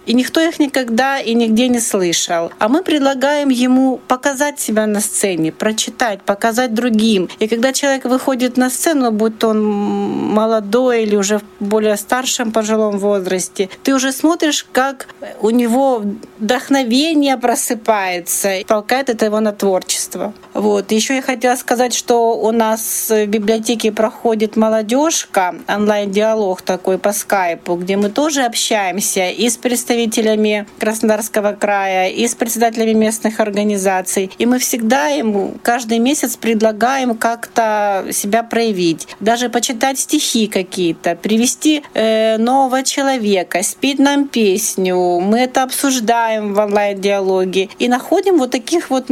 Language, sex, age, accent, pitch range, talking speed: Russian, female, 40-59, native, 205-255 Hz, 135 wpm